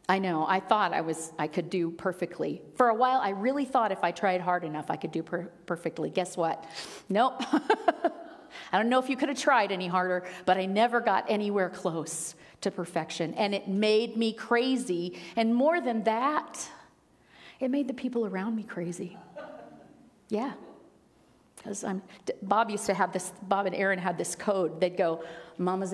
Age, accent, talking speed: 40-59, American, 185 wpm